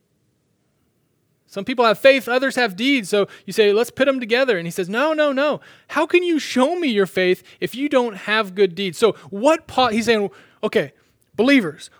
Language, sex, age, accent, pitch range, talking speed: English, male, 30-49, American, 165-240 Hz, 195 wpm